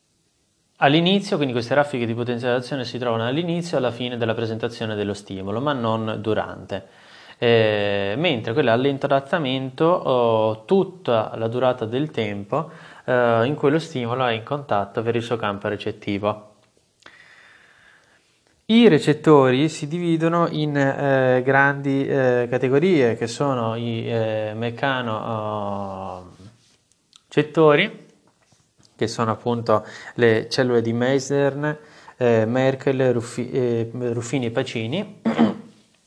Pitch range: 110-140 Hz